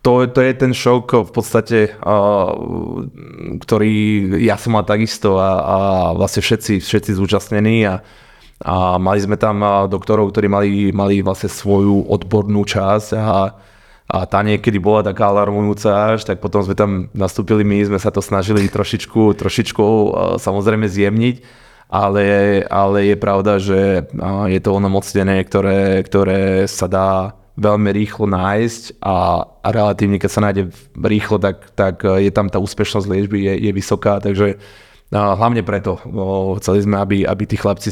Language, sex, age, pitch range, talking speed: Czech, male, 20-39, 95-105 Hz, 155 wpm